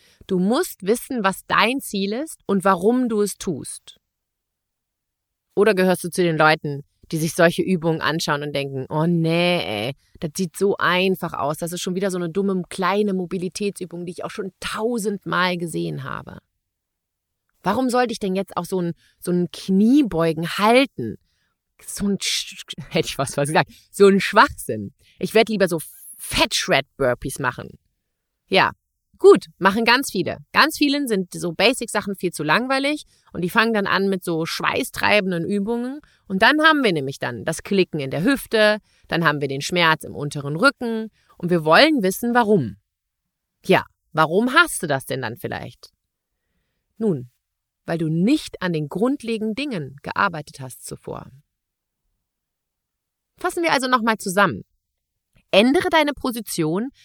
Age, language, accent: 30-49, German, German